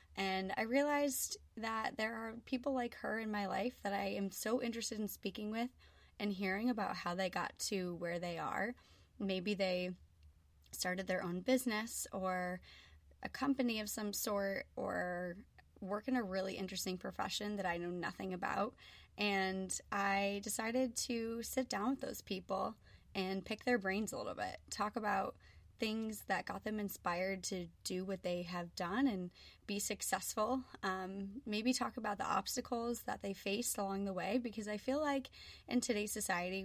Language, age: English, 20-39